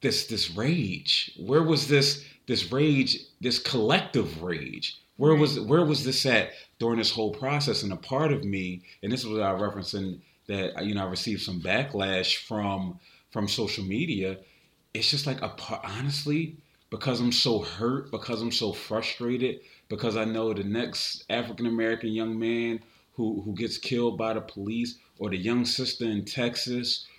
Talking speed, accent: 170 wpm, American